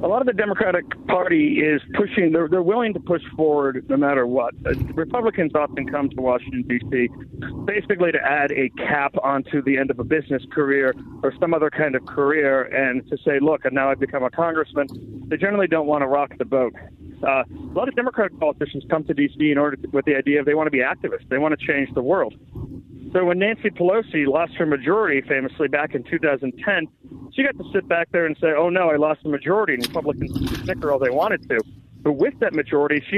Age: 40-59